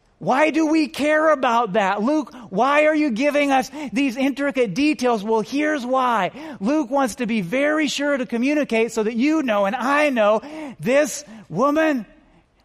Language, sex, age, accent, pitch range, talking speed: English, male, 30-49, American, 225-280 Hz, 165 wpm